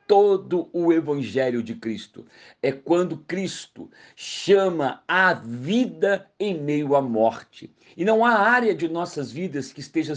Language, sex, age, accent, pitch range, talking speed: Portuguese, male, 50-69, Brazilian, 145-185 Hz, 140 wpm